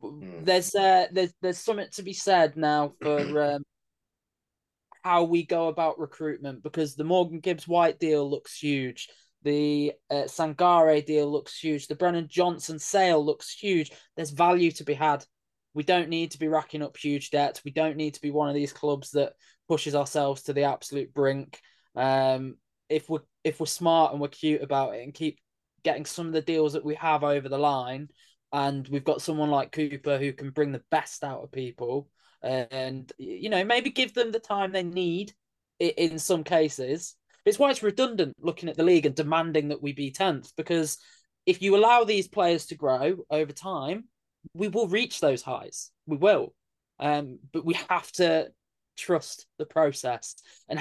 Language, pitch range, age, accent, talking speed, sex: English, 145-170 Hz, 10-29, British, 185 wpm, male